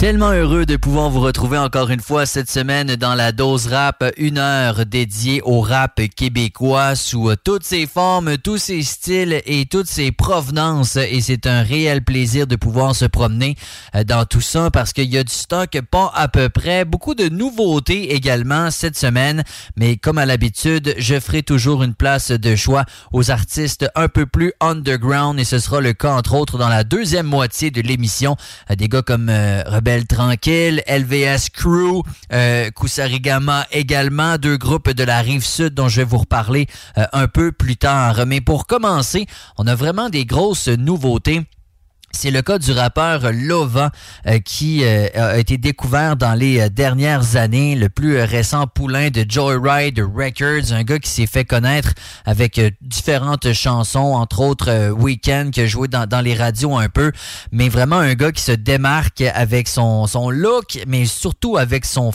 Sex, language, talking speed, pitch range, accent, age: male, English, 180 wpm, 120-145 Hz, Canadian, 30-49